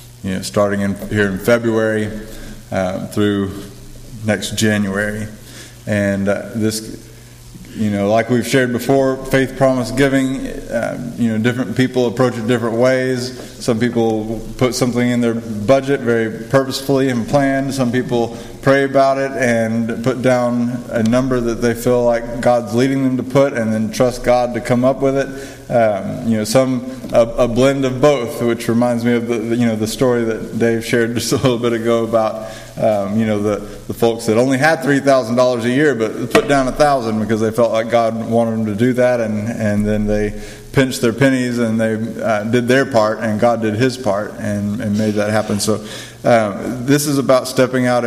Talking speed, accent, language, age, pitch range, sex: 195 wpm, American, English, 20-39, 110-130 Hz, male